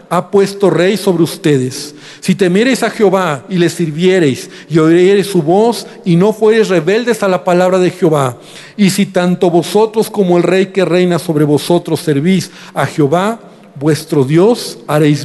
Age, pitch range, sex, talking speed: 50-69, 150-195 Hz, male, 165 wpm